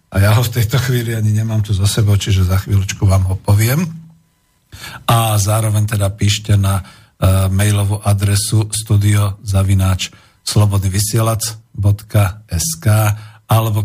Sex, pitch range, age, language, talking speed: male, 100-115 Hz, 50-69, Slovak, 115 wpm